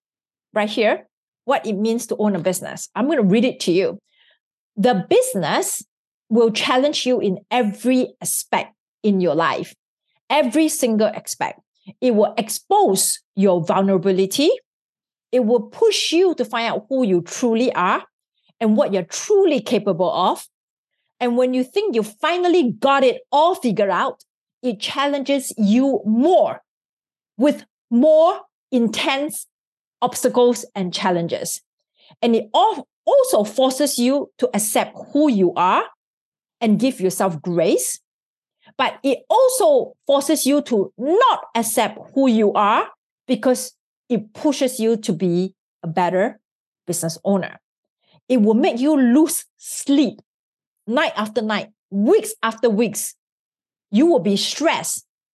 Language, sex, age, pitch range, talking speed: English, female, 40-59, 210-290 Hz, 135 wpm